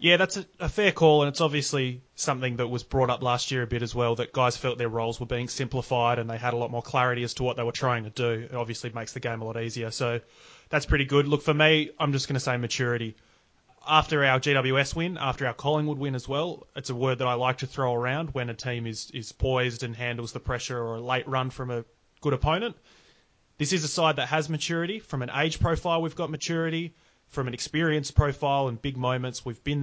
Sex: male